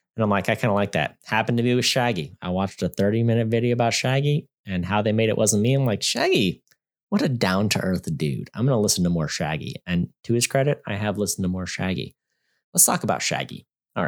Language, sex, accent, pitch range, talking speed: English, male, American, 100-130 Hz, 250 wpm